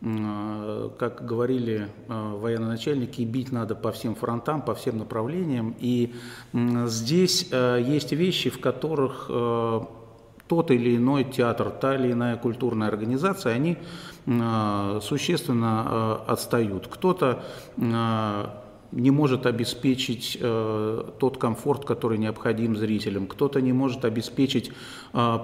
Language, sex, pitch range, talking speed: Russian, male, 110-130 Hz, 100 wpm